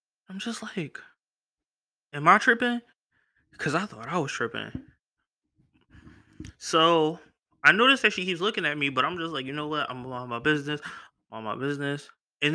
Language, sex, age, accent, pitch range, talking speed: English, male, 20-39, American, 135-220 Hz, 170 wpm